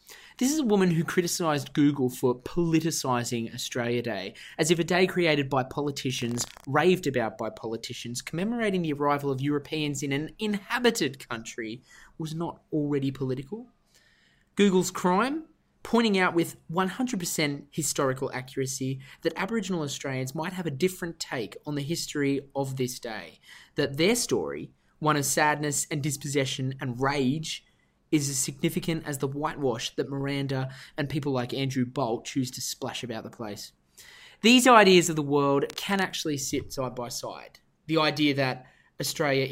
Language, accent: English, Australian